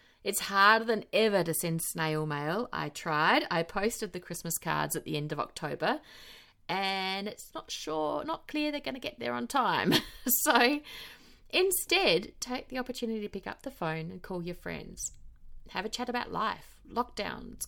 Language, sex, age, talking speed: English, female, 30-49, 175 wpm